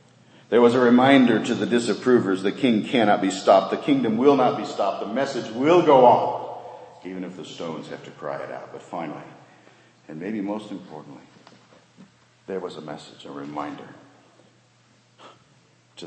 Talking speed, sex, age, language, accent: 170 wpm, male, 50-69, English, American